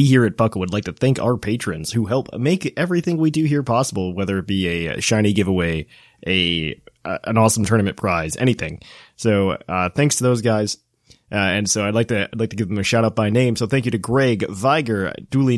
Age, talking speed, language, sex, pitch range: 30-49, 230 wpm, English, male, 110-135 Hz